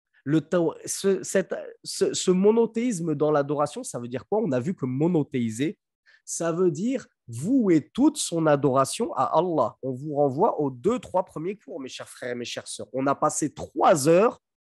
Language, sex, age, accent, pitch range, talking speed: French, male, 30-49, French, 155-205 Hz, 195 wpm